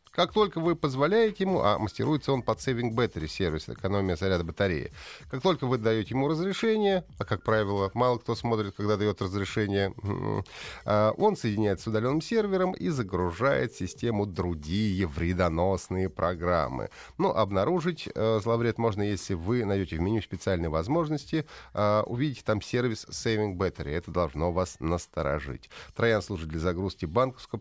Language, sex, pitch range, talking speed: Russian, male, 90-125 Hz, 145 wpm